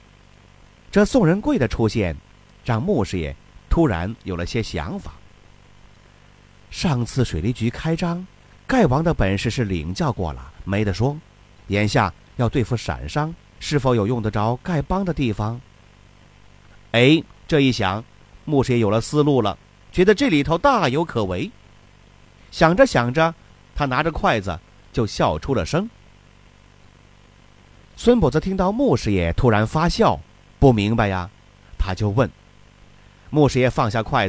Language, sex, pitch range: Chinese, male, 95-130 Hz